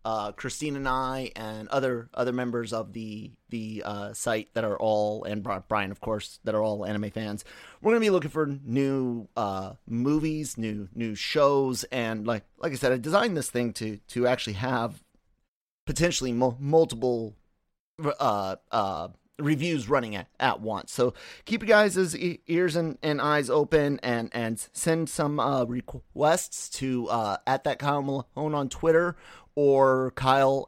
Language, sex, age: English, male, 30-49